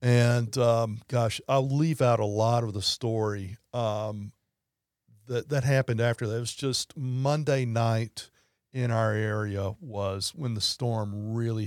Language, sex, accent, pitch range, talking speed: English, male, American, 105-125 Hz, 155 wpm